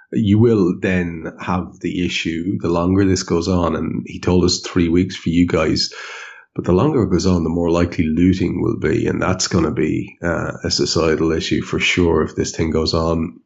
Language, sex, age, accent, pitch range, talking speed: English, male, 30-49, Irish, 85-95 Hz, 210 wpm